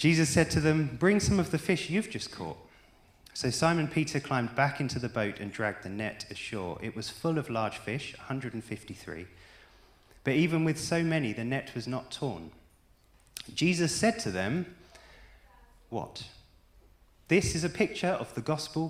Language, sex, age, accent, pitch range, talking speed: English, male, 30-49, British, 105-160 Hz, 170 wpm